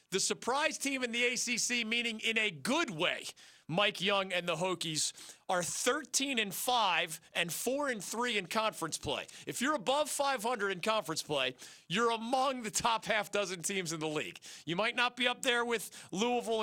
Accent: American